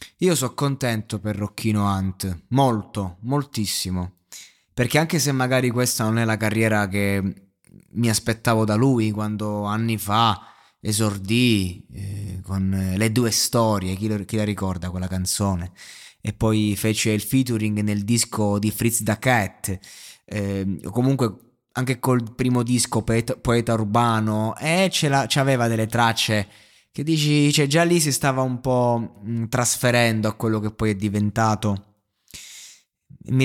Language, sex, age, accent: Italian, male, 20-39, native